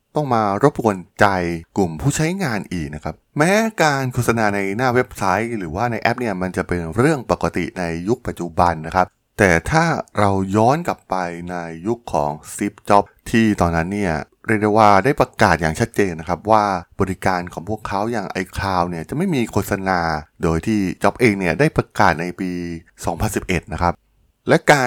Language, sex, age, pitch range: Thai, male, 20-39, 85-115 Hz